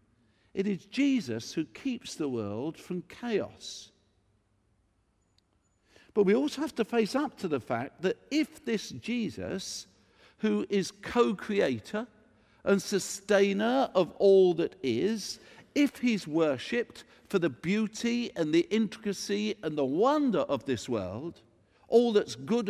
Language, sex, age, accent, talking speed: English, male, 50-69, British, 130 wpm